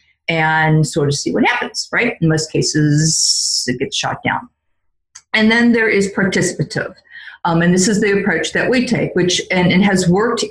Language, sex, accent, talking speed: English, female, American, 190 wpm